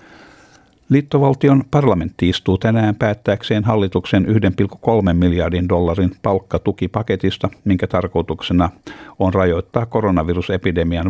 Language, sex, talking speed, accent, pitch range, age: Finnish, male, 80 wpm, native, 90-110 Hz, 50-69